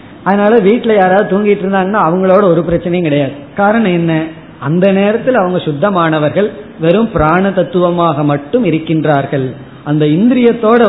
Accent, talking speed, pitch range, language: native, 120 wpm, 150-190 Hz, Tamil